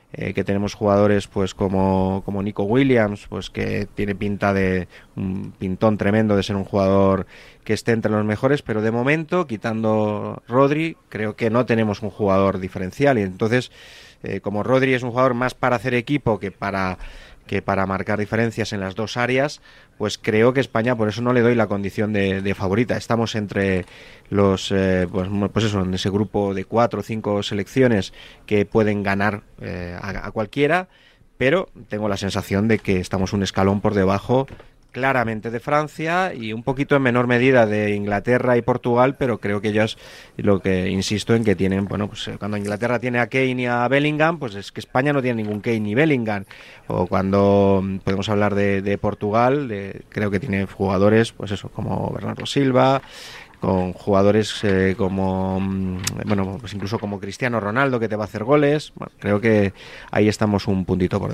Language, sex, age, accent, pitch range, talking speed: Spanish, male, 30-49, Spanish, 100-120 Hz, 185 wpm